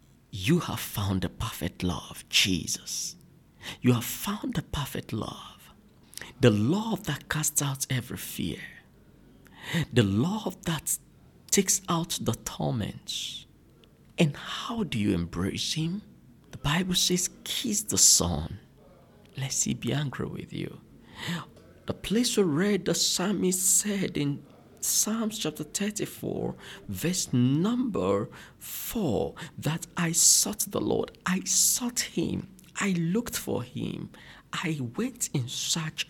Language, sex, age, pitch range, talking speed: English, male, 50-69, 125-205 Hz, 125 wpm